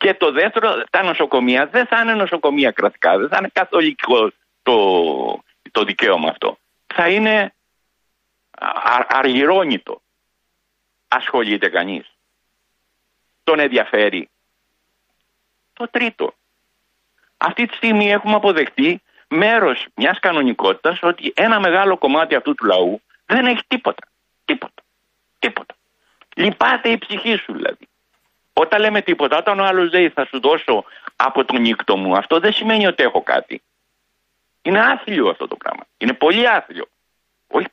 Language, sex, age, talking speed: Greek, male, 60-79, 130 wpm